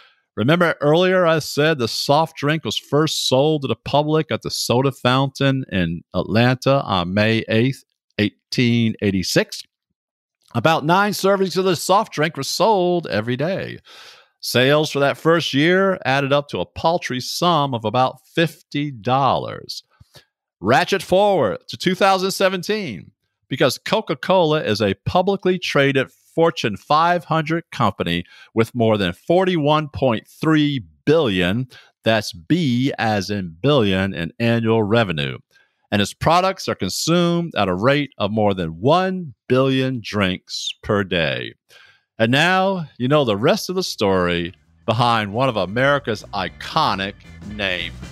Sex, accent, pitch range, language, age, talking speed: male, American, 105-160 Hz, English, 50-69, 130 wpm